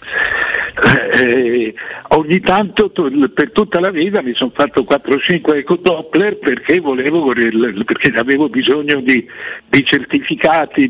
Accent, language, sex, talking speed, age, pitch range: native, Italian, male, 110 wpm, 60-79, 135-195 Hz